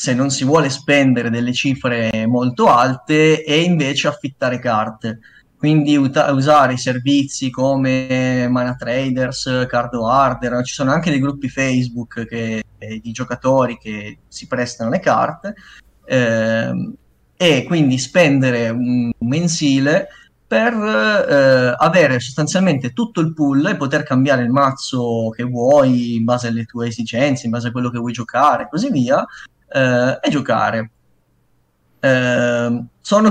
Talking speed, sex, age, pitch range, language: 135 wpm, male, 20-39, 120-145 Hz, Italian